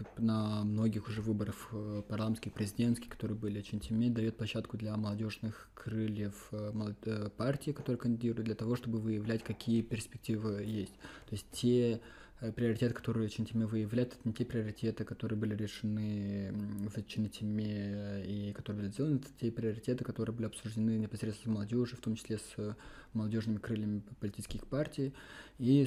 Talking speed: 150 wpm